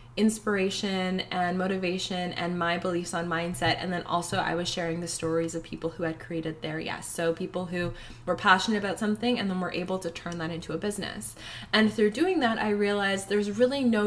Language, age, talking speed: English, 20-39, 210 wpm